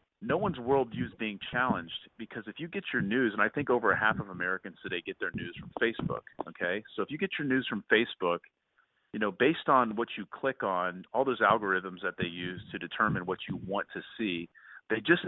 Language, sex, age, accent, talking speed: English, male, 40-59, American, 225 wpm